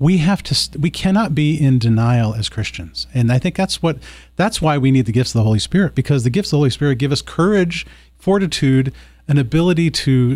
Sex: male